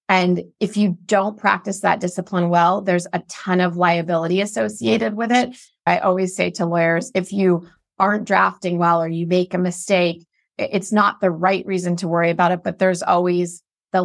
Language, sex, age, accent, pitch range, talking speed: English, female, 30-49, American, 175-200 Hz, 190 wpm